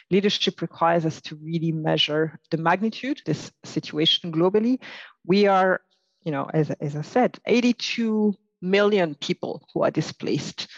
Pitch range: 160-195 Hz